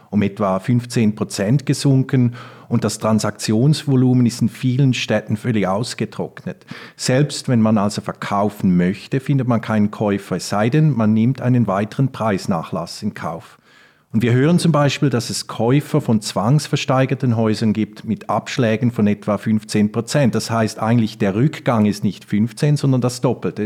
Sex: male